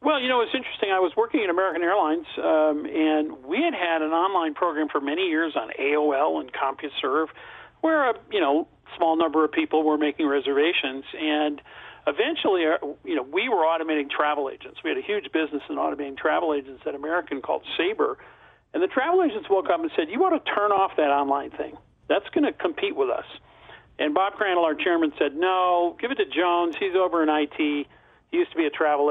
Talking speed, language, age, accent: 210 wpm, English, 50-69, American